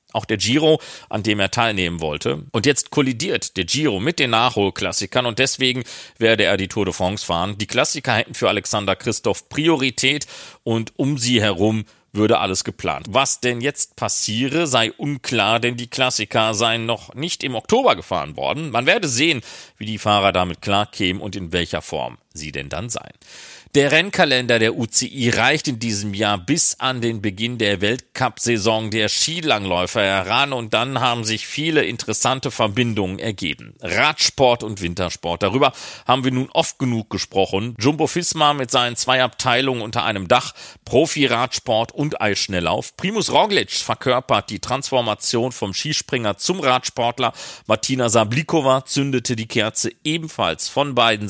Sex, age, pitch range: male, 40-59, 105-130 Hz